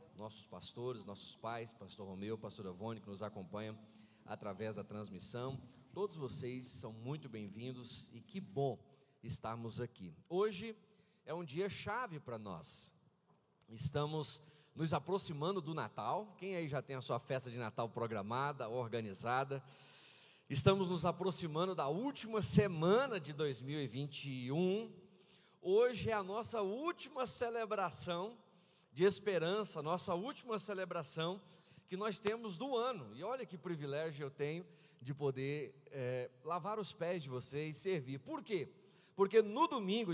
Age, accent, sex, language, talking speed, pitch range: 40-59, Brazilian, male, Portuguese, 140 wpm, 130-200 Hz